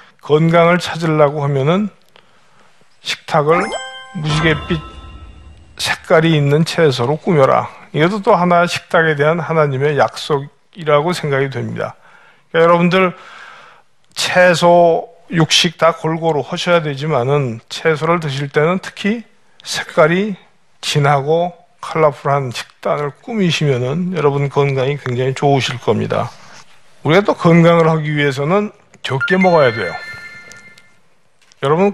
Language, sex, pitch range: Korean, male, 145-180 Hz